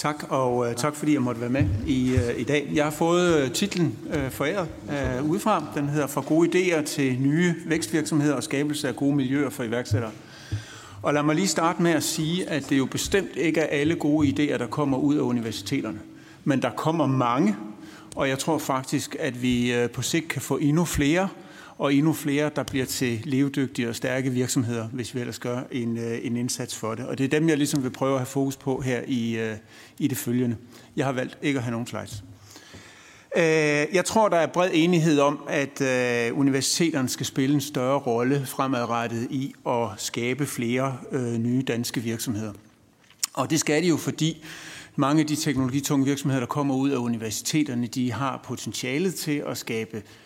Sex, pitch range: male, 120-150 Hz